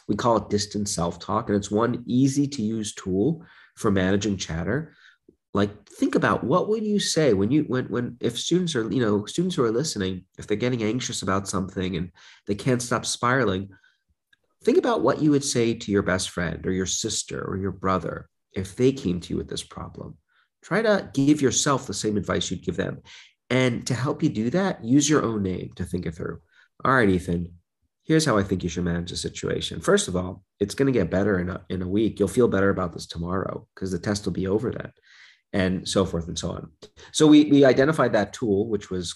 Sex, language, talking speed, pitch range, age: male, English, 220 wpm, 95-125 Hz, 40-59